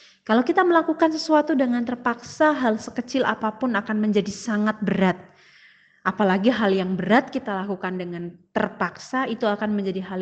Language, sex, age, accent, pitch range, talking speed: Indonesian, female, 30-49, native, 205-280 Hz, 145 wpm